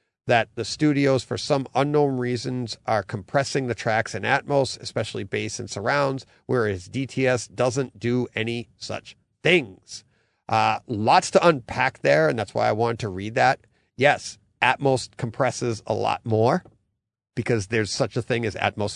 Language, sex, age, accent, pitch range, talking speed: English, male, 40-59, American, 110-140 Hz, 160 wpm